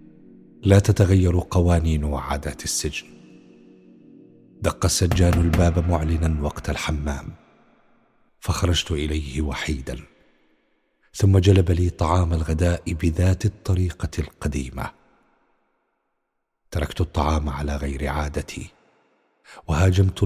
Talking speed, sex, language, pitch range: 85 wpm, male, Arabic, 80-90 Hz